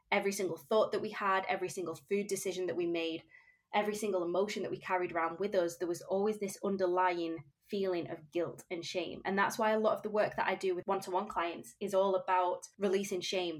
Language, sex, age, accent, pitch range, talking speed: English, female, 20-39, British, 175-200 Hz, 225 wpm